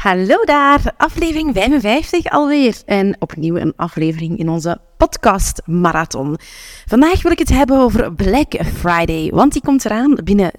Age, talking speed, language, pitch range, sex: 30-49, 145 wpm, Dutch, 170-240 Hz, female